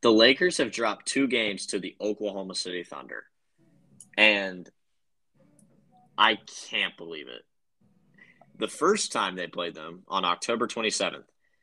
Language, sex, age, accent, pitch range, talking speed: English, male, 10-29, American, 95-120 Hz, 130 wpm